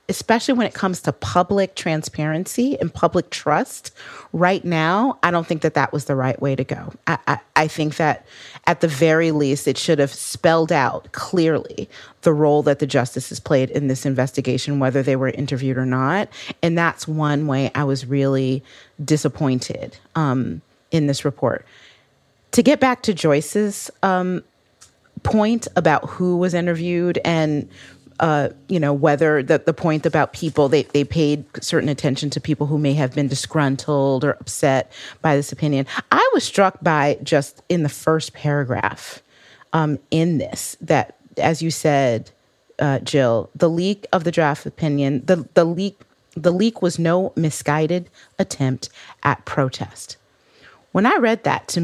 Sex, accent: female, American